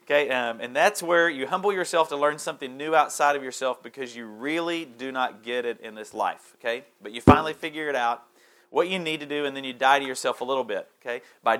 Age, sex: 40-59, male